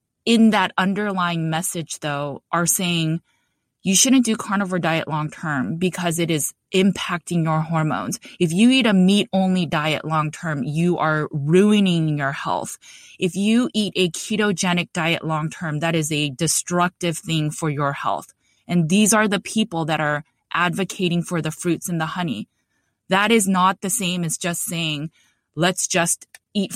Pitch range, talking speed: 160-195 Hz, 160 wpm